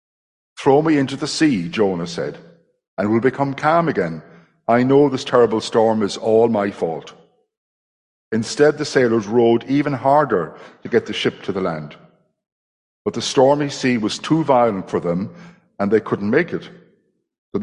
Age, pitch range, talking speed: 60-79, 105-135 Hz, 165 wpm